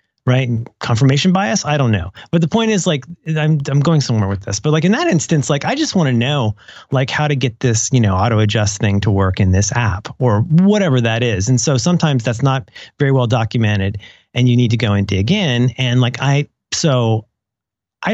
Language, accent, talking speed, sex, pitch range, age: English, American, 225 wpm, male, 110-150 Hz, 40-59